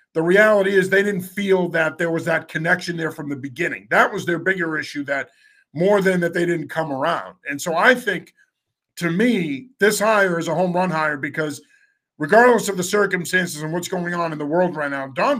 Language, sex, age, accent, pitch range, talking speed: English, male, 50-69, American, 155-195 Hz, 220 wpm